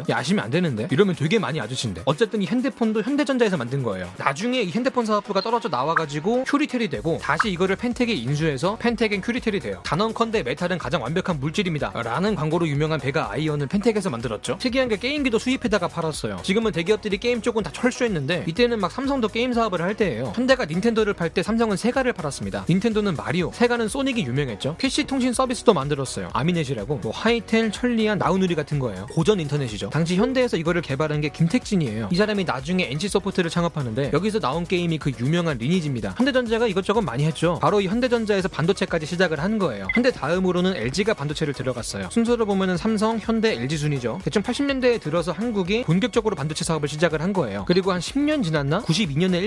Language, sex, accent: Korean, male, native